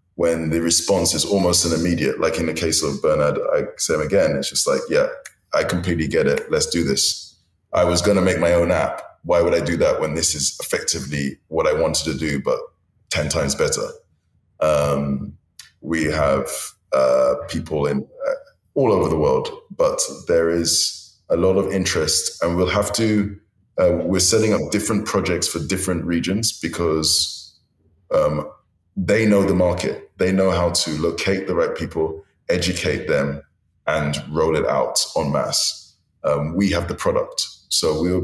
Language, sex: English, male